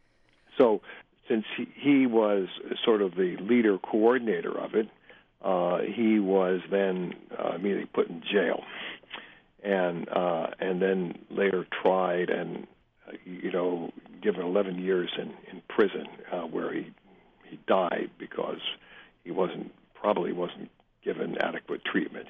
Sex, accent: male, American